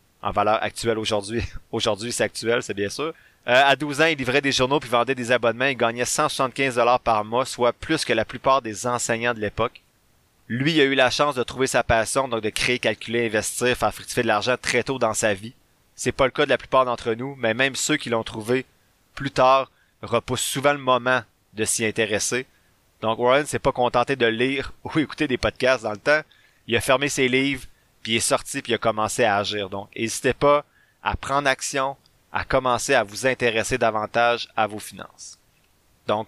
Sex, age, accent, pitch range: male, 30-49, Canadian, 110-135 Hz